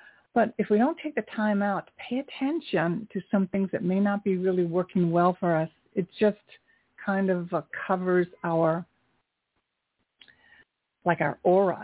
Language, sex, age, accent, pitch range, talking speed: English, female, 60-79, American, 180-210 Hz, 155 wpm